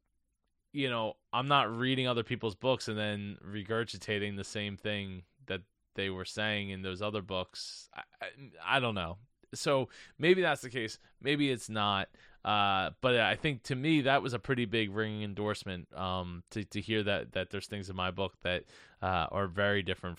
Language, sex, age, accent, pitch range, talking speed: English, male, 20-39, American, 100-135 Hz, 190 wpm